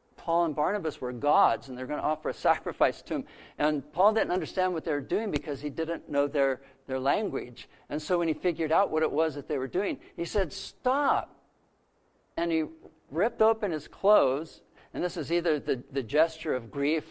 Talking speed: 210 wpm